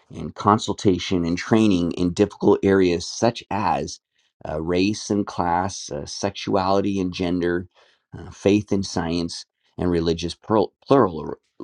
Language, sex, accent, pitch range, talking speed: English, male, American, 90-105 Hz, 125 wpm